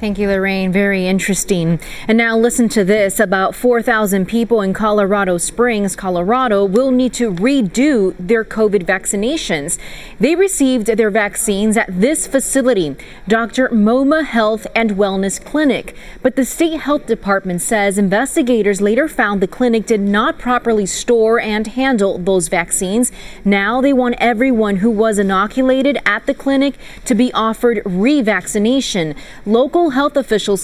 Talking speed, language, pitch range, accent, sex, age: 145 wpm, English, 200-245 Hz, American, female, 30-49